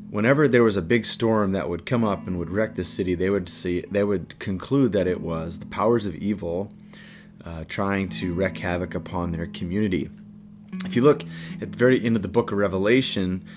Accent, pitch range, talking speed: American, 90-115 Hz, 210 wpm